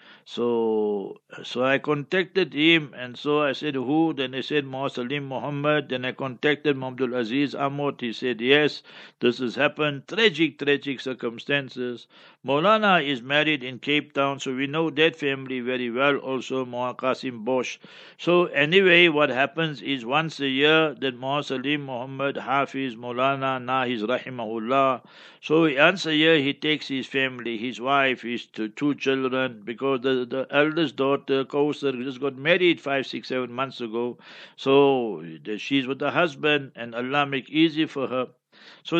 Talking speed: 160 wpm